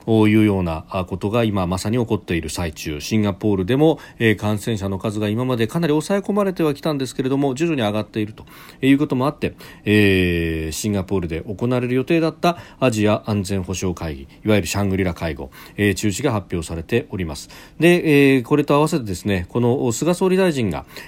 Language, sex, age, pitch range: Japanese, male, 40-59, 95-140 Hz